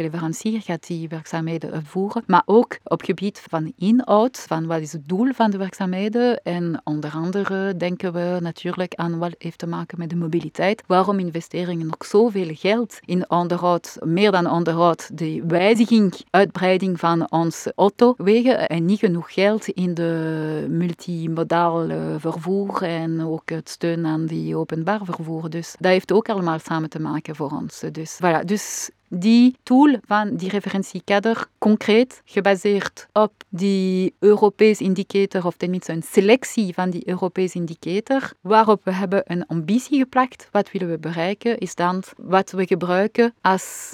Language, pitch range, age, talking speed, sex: Dutch, 170-205 Hz, 30-49, 155 wpm, female